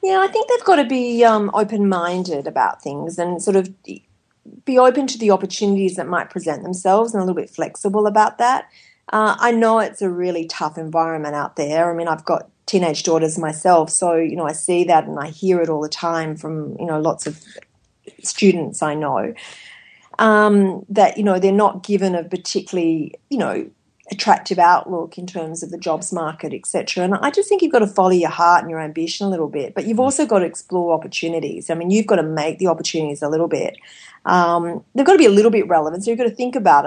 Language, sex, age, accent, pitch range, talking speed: English, female, 40-59, Australian, 165-200 Hz, 225 wpm